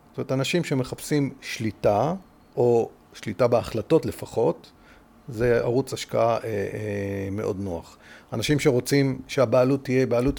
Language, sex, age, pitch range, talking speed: Hebrew, male, 40-59, 115-150 Hz, 120 wpm